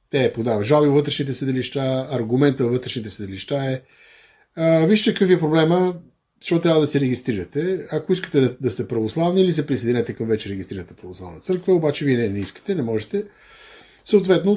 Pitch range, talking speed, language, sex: 125-170 Hz, 170 wpm, Bulgarian, male